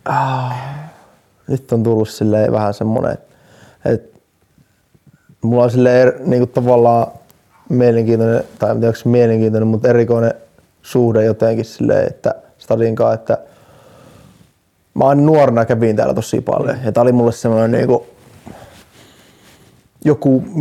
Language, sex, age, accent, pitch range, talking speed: Finnish, male, 20-39, native, 110-130 Hz, 115 wpm